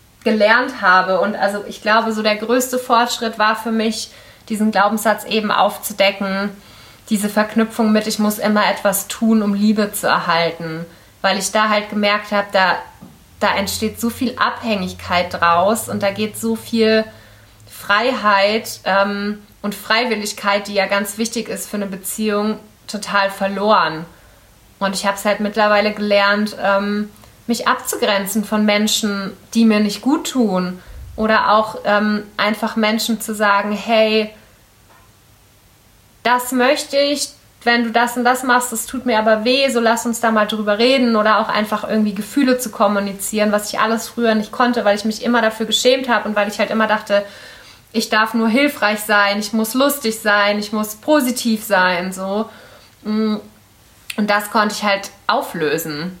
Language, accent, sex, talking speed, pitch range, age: German, German, female, 165 wpm, 200-225 Hz, 20-39